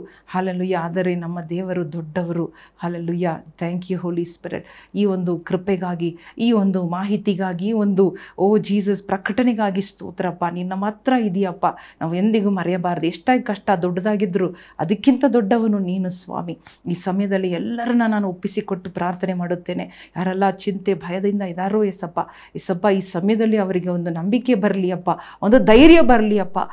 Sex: female